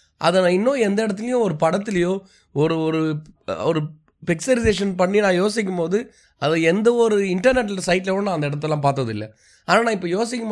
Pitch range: 145-195 Hz